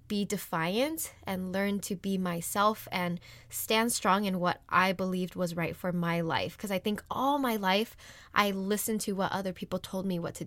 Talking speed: 200 wpm